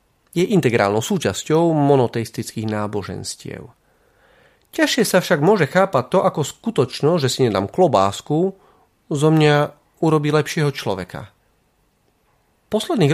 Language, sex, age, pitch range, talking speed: Slovak, male, 30-49, 125-180 Hz, 110 wpm